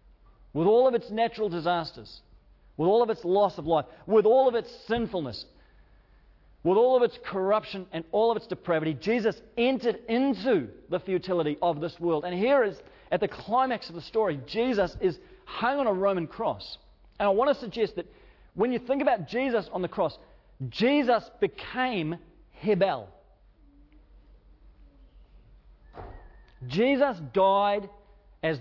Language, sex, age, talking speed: English, male, 40-59, 150 wpm